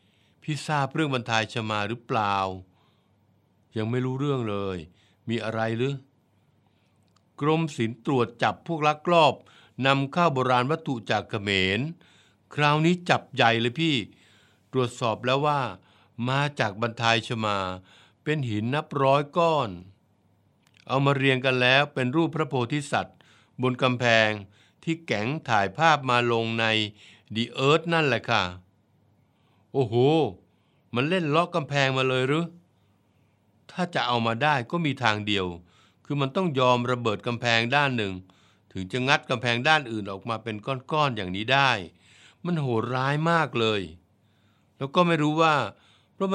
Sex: male